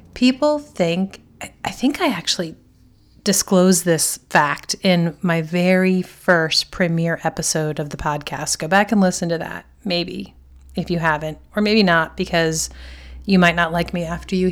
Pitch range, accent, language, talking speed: 170-225 Hz, American, English, 160 wpm